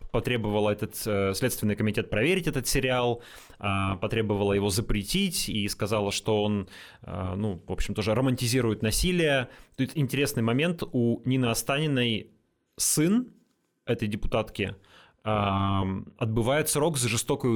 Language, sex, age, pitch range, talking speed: Russian, male, 20-39, 110-140 Hz, 125 wpm